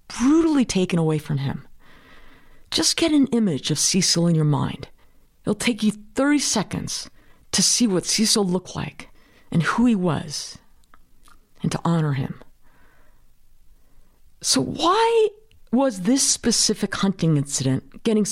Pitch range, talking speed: 170-255 Hz, 135 wpm